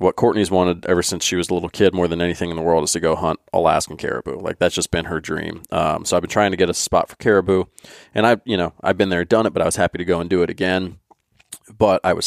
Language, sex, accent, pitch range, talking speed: English, male, American, 85-95 Hz, 300 wpm